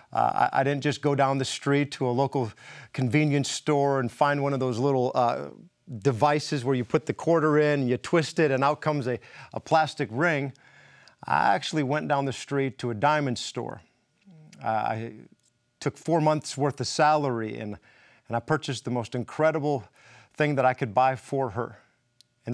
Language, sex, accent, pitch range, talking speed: English, male, American, 125-150 Hz, 190 wpm